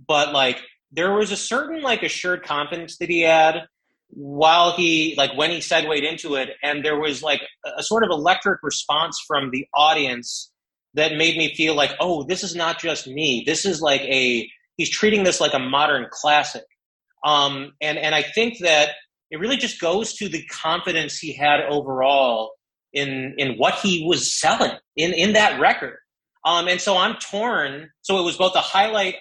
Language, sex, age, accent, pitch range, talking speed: English, male, 30-49, American, 140-175 Hz, 185 wpm